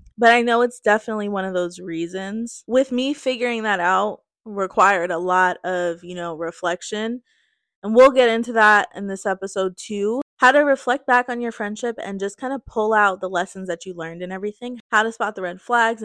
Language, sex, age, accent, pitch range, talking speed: English, female, 20-39, American, 180-220 Hz, 210 wpm